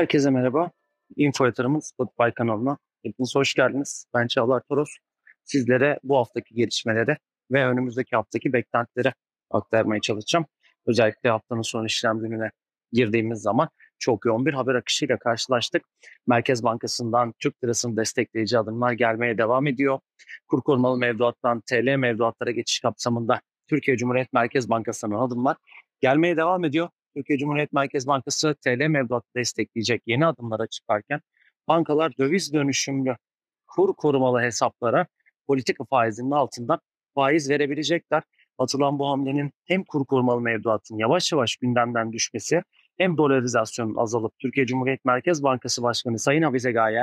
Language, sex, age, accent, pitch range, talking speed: Turkish, male, 40-59, native, 120-145 Hz, 130 wpm